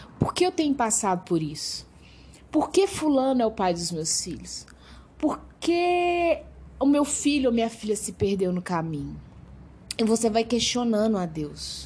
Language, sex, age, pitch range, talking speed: Portuguese, female, 20-39, 185-270 Hz, 170 wpm